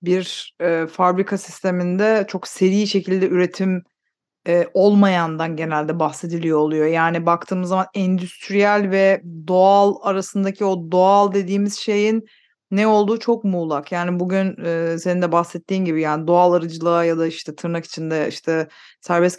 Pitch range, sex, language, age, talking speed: 170-195 Hz, female, Turkish, 30-49, 140 wpm